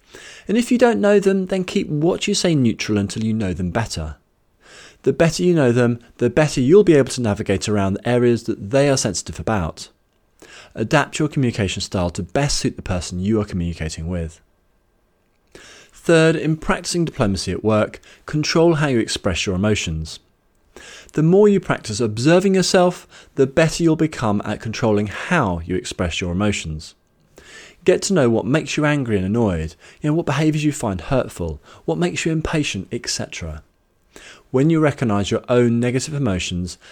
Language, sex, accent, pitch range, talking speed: English, male, British, 95-150 Hz, 175 wpm